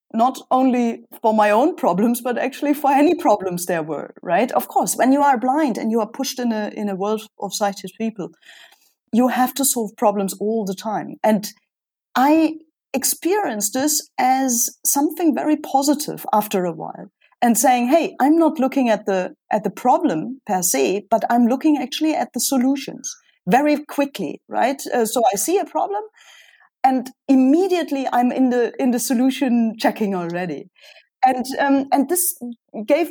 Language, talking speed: Dutch, 170 wpm